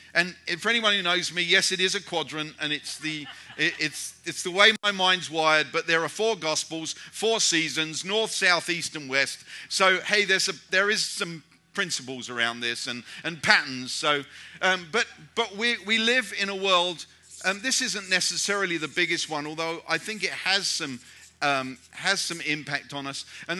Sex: male